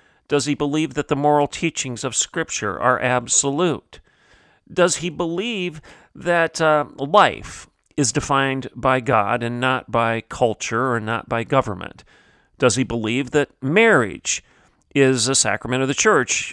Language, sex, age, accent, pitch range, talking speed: English, male, 40-59, American, 115-150 Hz, 145 wpm